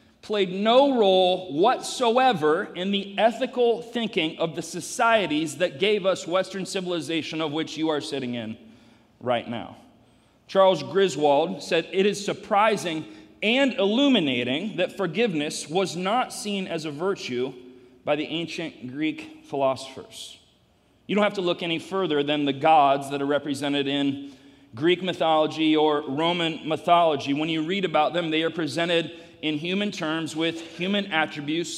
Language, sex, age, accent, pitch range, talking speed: English, male, 40-59, American, 155-195 Hz, 145 wpm